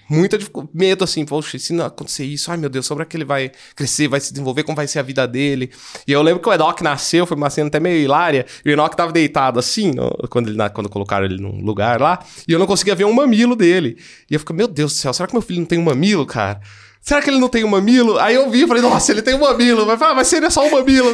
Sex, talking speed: male, 295 wpm